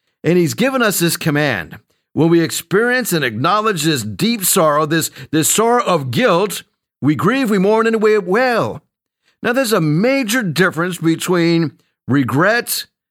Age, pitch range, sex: 50-69, 140-185 Hz, male